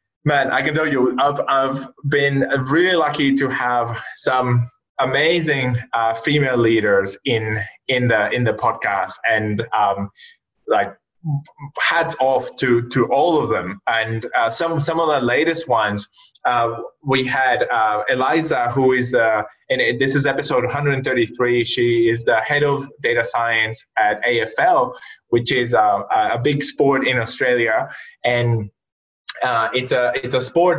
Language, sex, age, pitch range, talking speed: English, male, 20-39, 120-145 Hz, 160 wpm